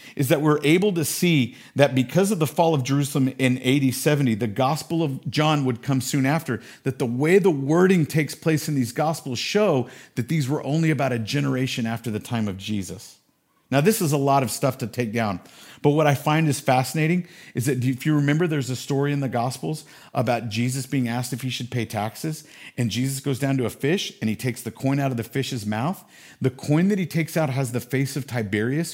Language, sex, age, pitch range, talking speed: English, male, 50-69, 120-155 Hz, 230 wpm